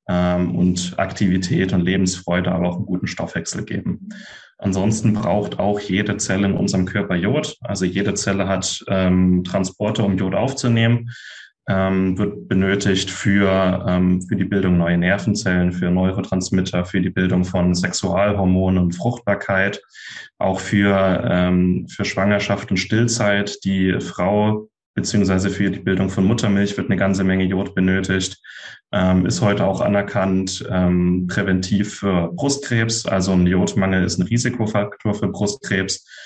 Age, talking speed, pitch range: 20-39, 140 wpm, 95-105 Hz